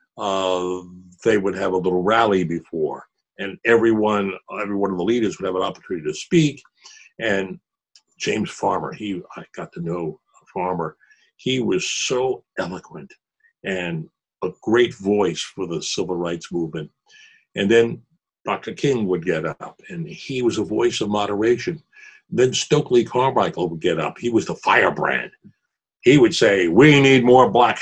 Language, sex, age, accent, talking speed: English, male, 60-79, American, 155 wpm